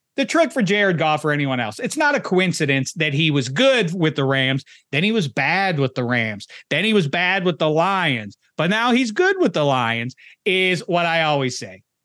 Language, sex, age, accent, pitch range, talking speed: English, male, 40-59, American, 135-175 Hz, 225 wpm